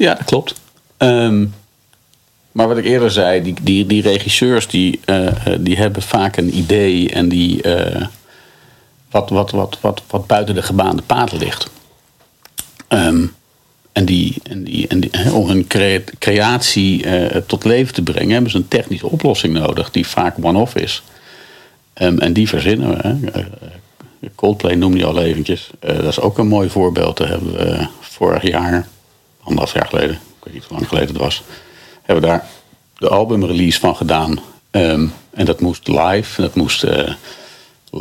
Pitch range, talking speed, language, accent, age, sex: 90-105 Hz, 170 wpm, Dutch, Dutch, 50-69, male